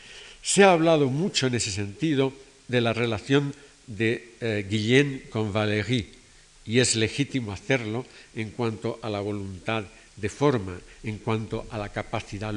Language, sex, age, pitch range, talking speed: Spanish, male, 60-79, 110-135 Hz, 150 wpm